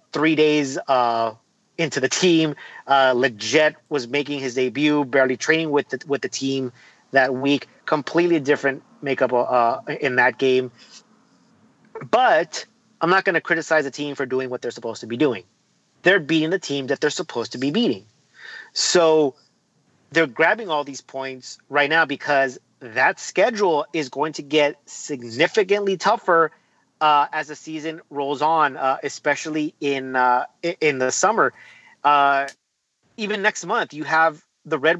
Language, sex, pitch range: English, male, 135-160 Hz